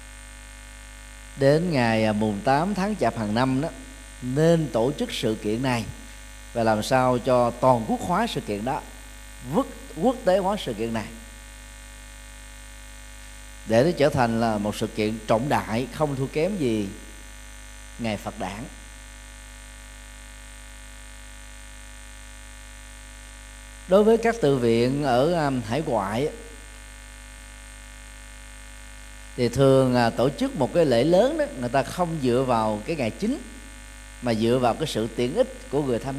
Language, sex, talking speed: Vietnamese, male, 140 wpm